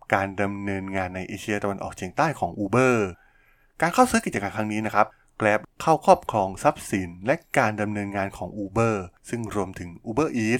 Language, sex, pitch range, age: Thai, male, 100-130 Hz, 20-39